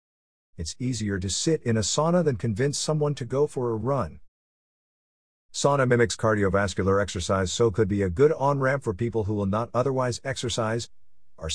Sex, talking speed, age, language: male, 170 wpm, 50-69, English